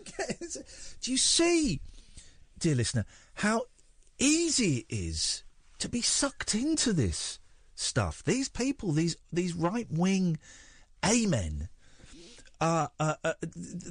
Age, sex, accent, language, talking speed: 50-69, male, British, English, 110 wpm